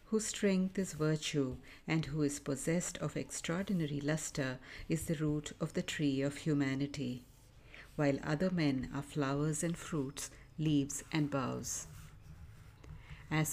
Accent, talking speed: Indian, 135 wpm